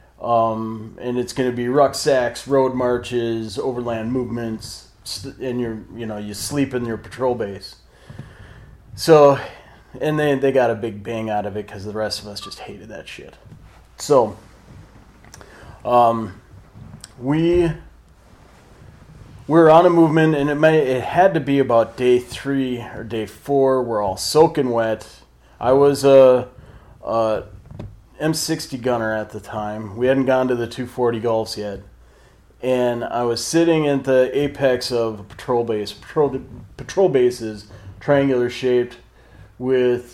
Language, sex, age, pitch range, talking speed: English, male, 30-49, 110-135 Hz, 150 wpm